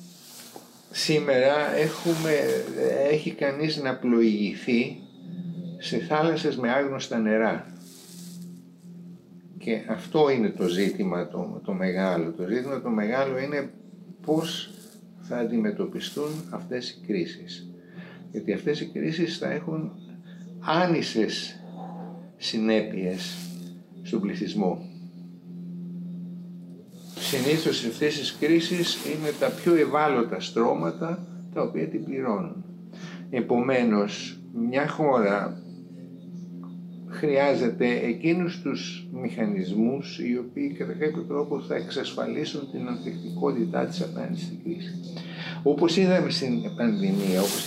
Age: 60-79